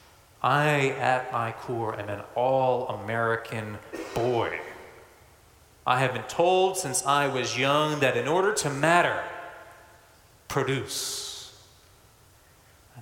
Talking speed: 105 wpm